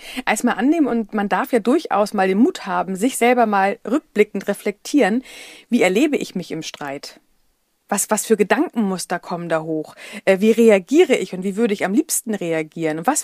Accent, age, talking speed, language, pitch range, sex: German, 40-59, 190 wpm, German, 185-250 Hz, female